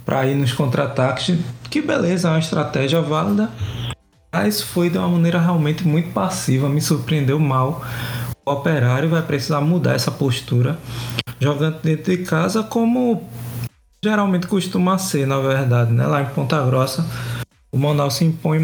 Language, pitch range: Portuguese, 125-165 Hz